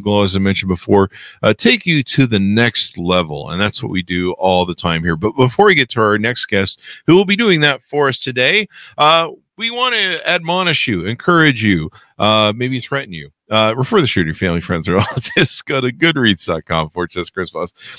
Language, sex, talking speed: English, male, 220 wpm